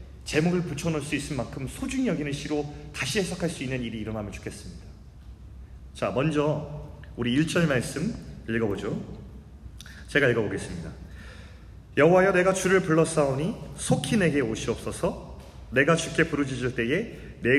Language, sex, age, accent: Korean, male, 30-49, native